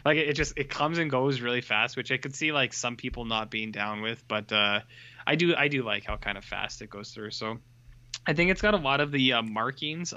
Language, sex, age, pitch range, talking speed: English, male, 20-39, 115-150 Hz, 265 wpm